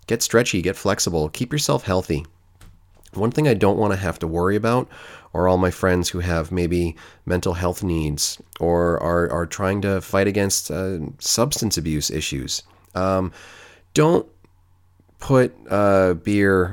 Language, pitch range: English, 85-100 Hz